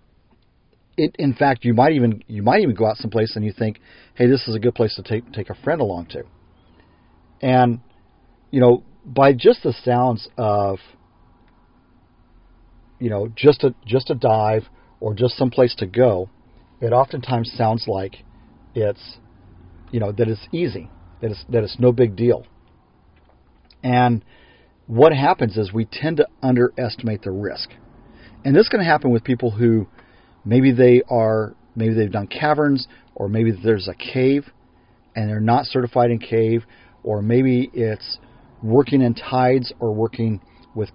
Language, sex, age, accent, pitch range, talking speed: English, male, 40-59, American, 110-125 Hz, 165 wpm